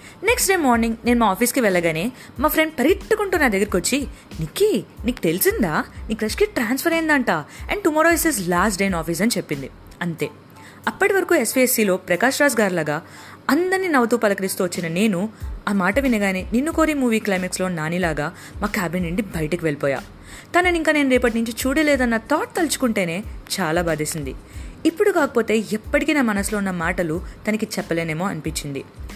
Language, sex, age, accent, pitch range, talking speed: Telugu, female, 20-39, native, 180-280 Hz, 150 wpm